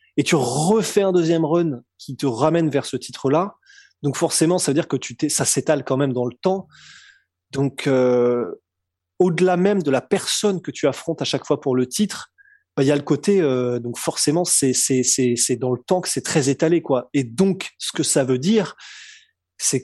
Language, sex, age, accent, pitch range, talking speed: French, male, 20-39, French, 130-170 Hz, 220 wpm